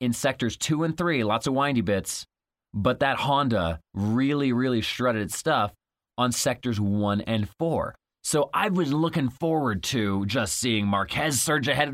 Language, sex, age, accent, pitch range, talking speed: English, male, 30-49, American, 110-140 Hz, 165 wpm